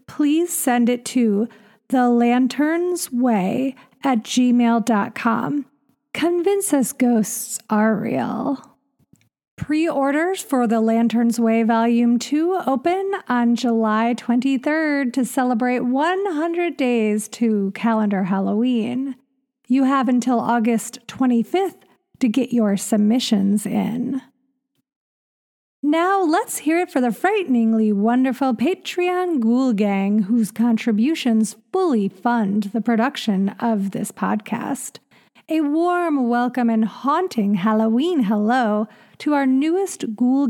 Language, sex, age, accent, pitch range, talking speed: English, female, 40-59, American, 230-285 Hz, 105 wpm